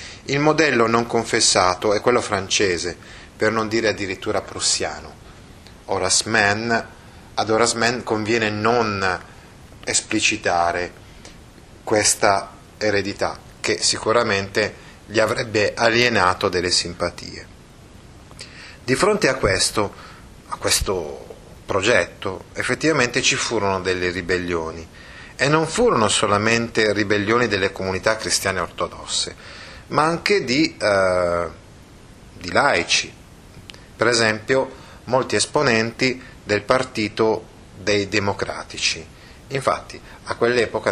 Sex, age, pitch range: male, 30-49, 95-120 Hz